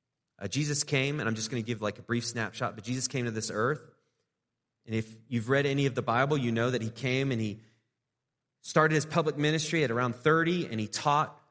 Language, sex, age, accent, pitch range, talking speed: English, male, 30-49, American, 115-145 Hz, 220 wpm